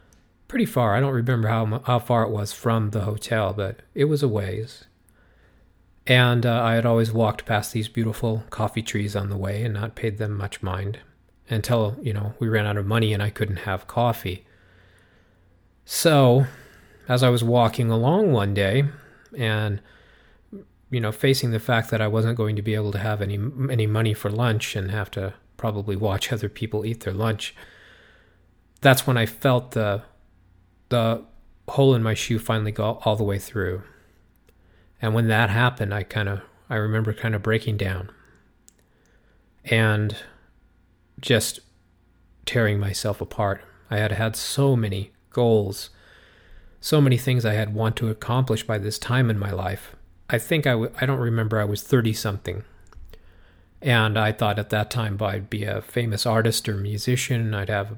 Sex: male